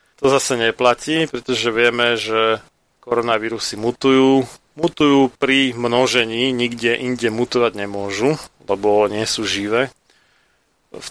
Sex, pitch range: male, 110-125 Hz